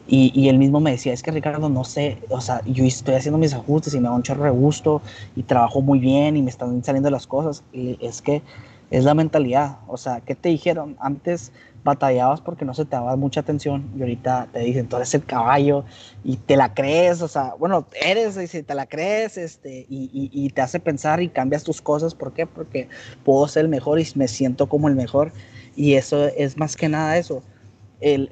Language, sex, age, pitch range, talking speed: Spanish, male, 20-39, 130-160 Hz, 225 wpm